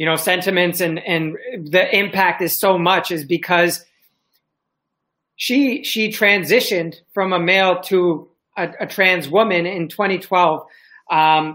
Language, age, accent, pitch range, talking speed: English, 30-49, American, 165-190 Hz, 135 wpm